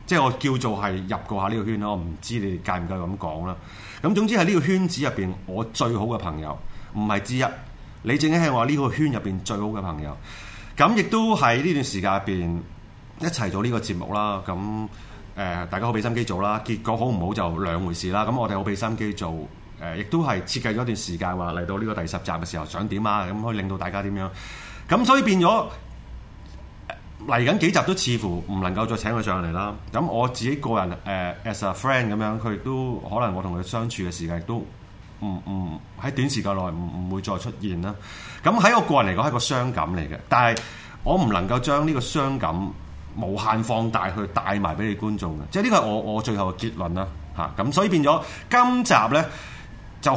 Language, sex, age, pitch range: Chinese, male, 30-49, 95-130 Hz